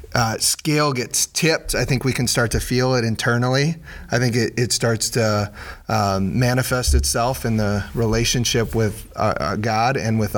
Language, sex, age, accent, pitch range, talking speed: English, male, 30-49, American, 100-125 Hz, 180 wpm